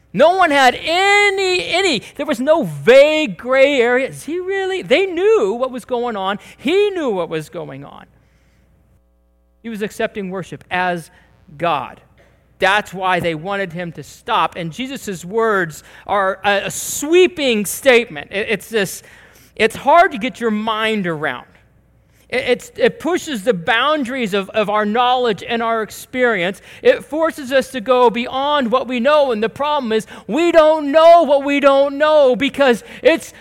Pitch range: 205-310 Hz